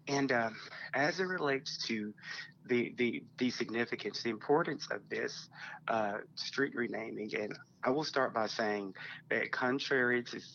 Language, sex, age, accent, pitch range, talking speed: English, male, 30-49, American, 115-140 Hz, 150 wpm